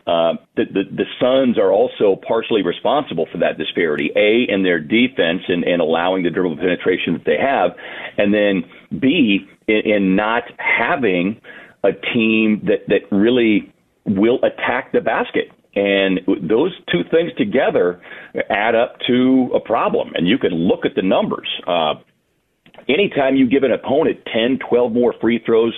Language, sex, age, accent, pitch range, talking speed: English, male, 40-59, American, 100-160 Hz, 160 wpm